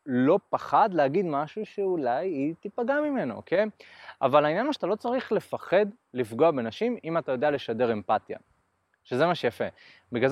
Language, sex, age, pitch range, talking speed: Hebrew, male, 20-39, 125-185 Hz, 155 wpm